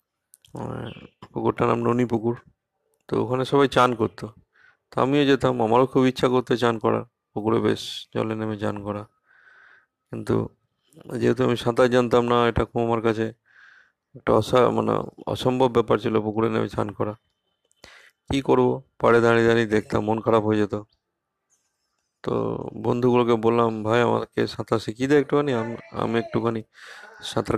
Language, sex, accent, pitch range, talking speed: Bengali, male, native, 110-125 Hz, 140 wpm